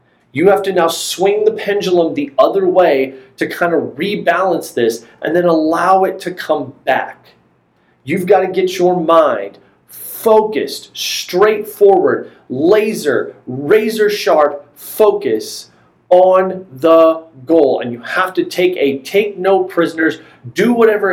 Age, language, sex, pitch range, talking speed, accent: 30-49, English, male, 150-210 Hz, 135 wpm, American